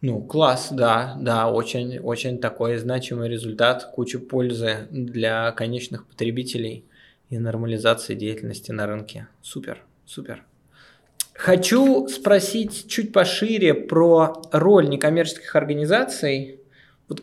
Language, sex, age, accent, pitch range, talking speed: Russian, male, 20-39, native, 125-160 Hz, 100 wpm